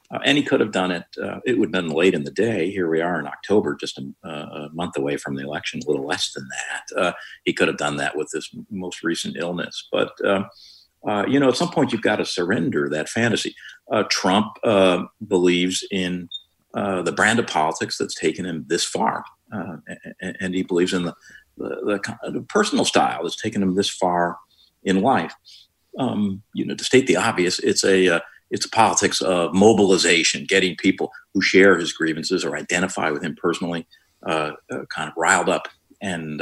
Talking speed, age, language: 210 wpm, 50-69, English